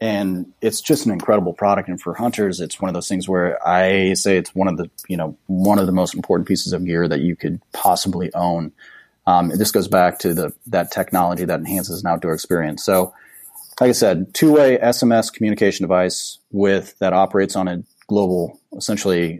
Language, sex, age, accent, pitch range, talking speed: English, male, 30-49, American, 90-105 Hz, 200 wpm